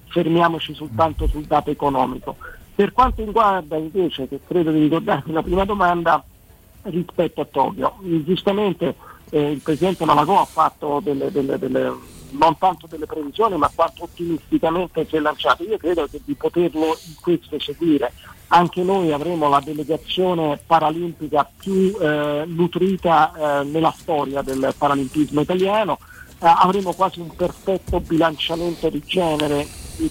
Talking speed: 140 wpm